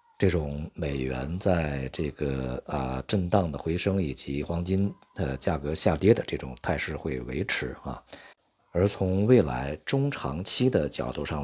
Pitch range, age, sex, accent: 65-95 Hz, 50-69, male, native